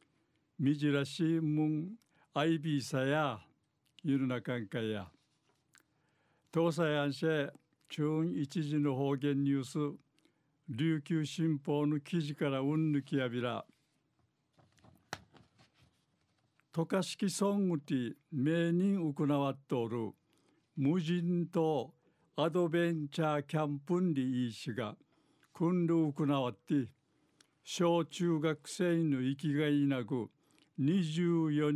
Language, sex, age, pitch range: Japanese, male, 60-79, 140-160 Hz